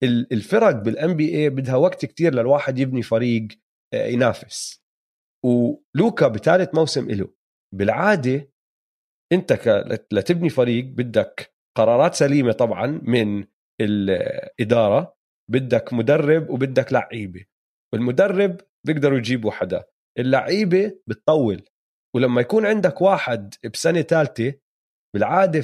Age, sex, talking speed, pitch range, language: 30-49, male, 100 wpm, 125-175 Hz, Arabic